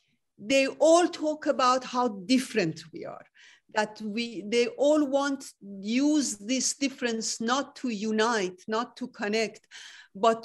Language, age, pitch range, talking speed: English, 50-69, 215-265 Hz, 130 wpm